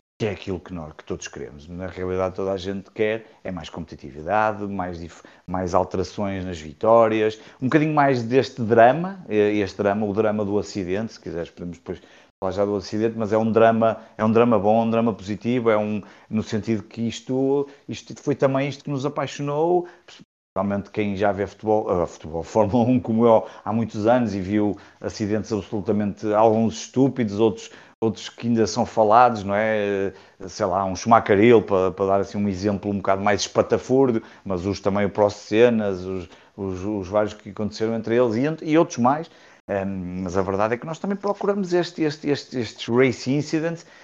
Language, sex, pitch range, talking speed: Portuguese, male, 100-140 Hz, 180 wpm